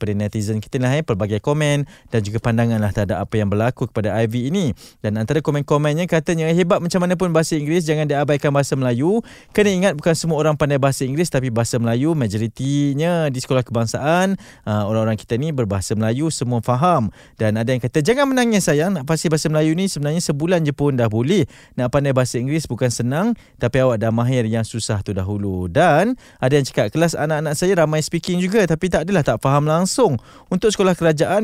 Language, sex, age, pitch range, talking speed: Malay, male, 20-39, 125-180 Hz, 200 wpm